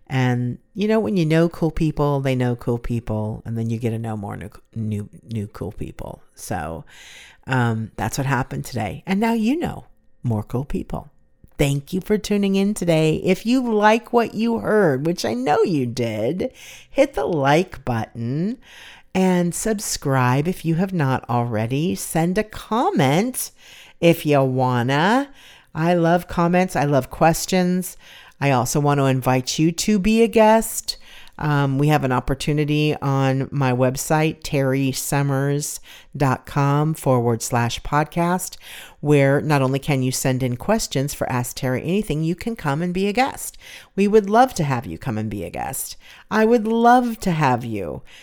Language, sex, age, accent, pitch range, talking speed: English, female, 50-69, American, 130-190 Hz, 170 wpm